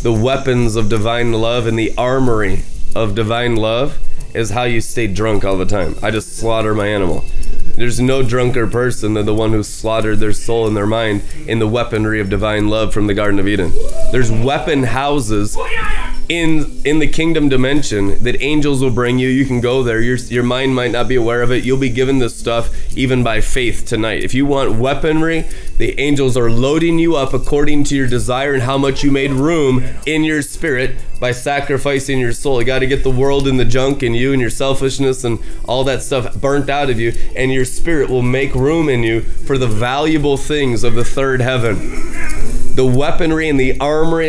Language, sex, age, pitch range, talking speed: English, male, 20-39, 115-145 Hz, 210 wpm